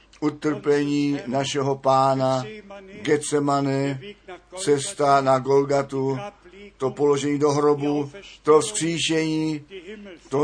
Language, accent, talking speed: Czech, native, 80 wpm